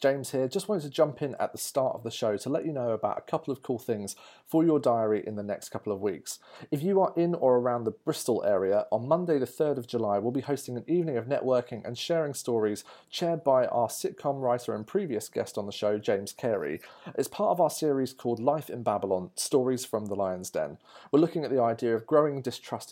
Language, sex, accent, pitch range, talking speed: English, male, British, 115-155 Hz, 240 wpm